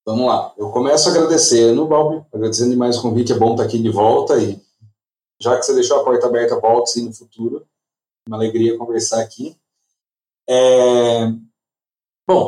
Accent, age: Brazilian, 30-49